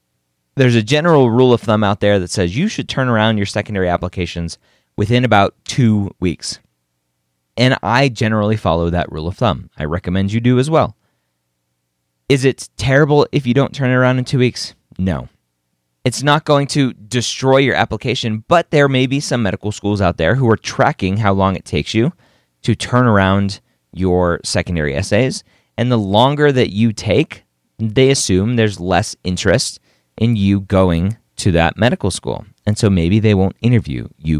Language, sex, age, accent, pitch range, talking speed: English, male, 30-49, American, 85-120 Hz, 180 wpm